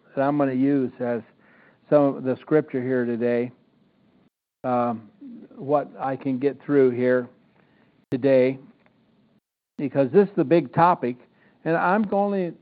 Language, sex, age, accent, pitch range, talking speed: English, male, 60-79, American, 135-180 Hz, 140 wpm